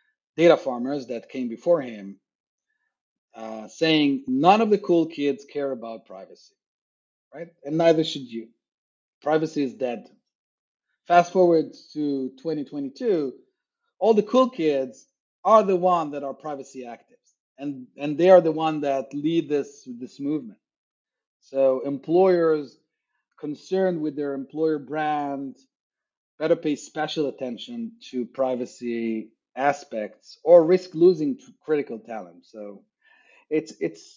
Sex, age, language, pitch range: male, 30-49, English, 125-170 Hz